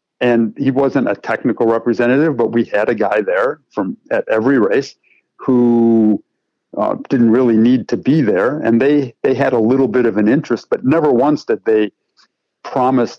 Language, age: English, 50-69